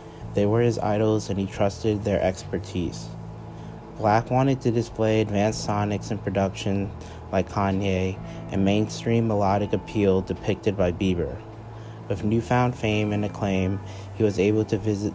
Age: 30-49